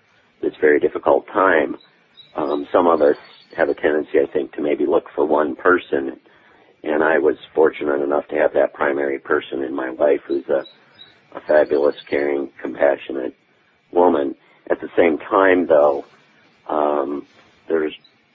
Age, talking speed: 50-69, 150 wpm